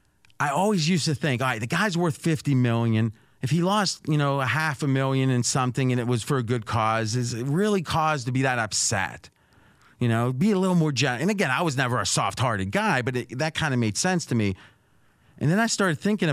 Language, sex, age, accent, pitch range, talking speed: English, male, 30-49, American, 115-155 Hz, 240 wpm